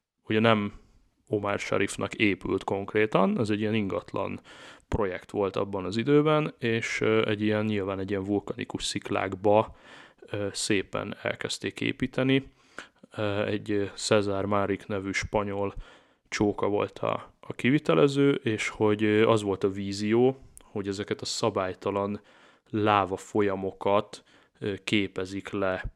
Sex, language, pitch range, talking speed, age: male, Hungarian, 100-115 Hz, 115 wpm, 30-49